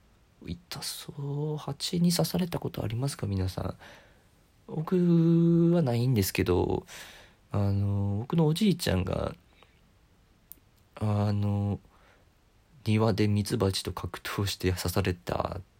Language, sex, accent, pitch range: Japanese, male, native, 95-115 Hz